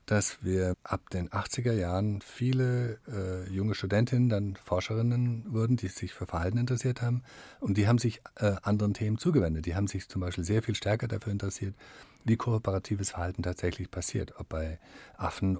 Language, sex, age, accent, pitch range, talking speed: German, male, 50-69, German, 90-115 Hz, 175 wpm